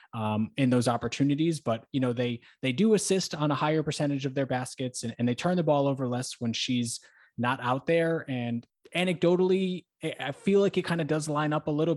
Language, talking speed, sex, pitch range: English, 220 wpm, male, 120-145 Hz